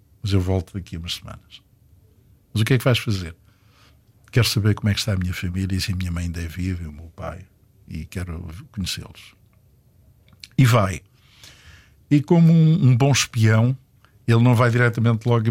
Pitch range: 100-120 Hz